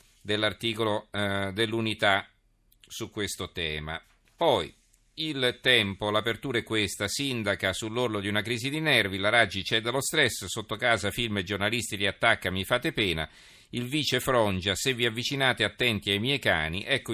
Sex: male